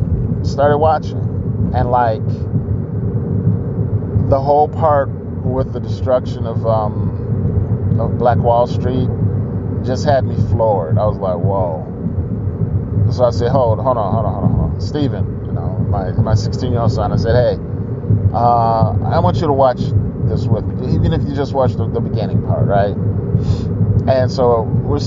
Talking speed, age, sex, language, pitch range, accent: 165 wpm, 30-49, male, English, 100-120 Hz, American